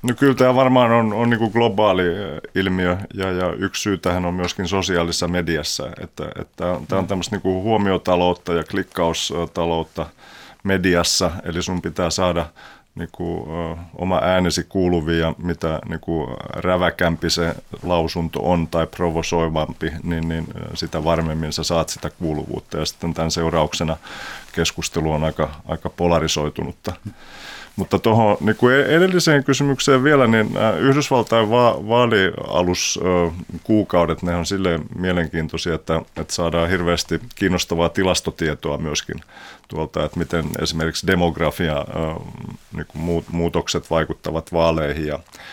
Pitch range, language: 80-95 Hz, Finnish